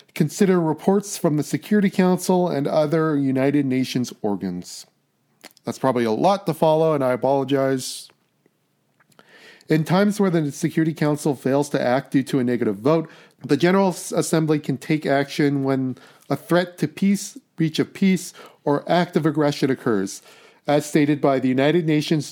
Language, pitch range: English, 130-160 Hz